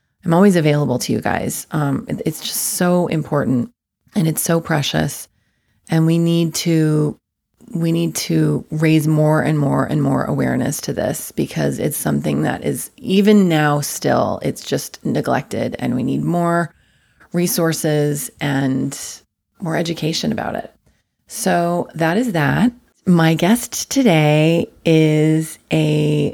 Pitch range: 150-170 Hz